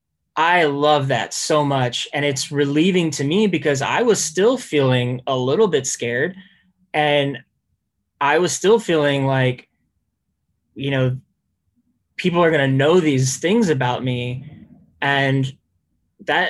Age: 10-29